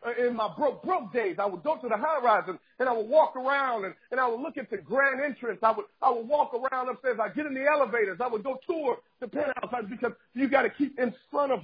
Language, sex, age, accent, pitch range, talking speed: English, male, 50-69, American, 205-265 Hz, 270 wpm